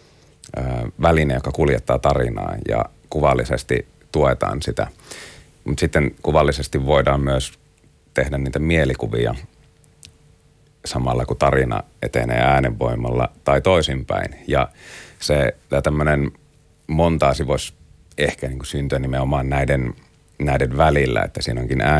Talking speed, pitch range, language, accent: 100 wpm, 65-75 Hz, Finnish, native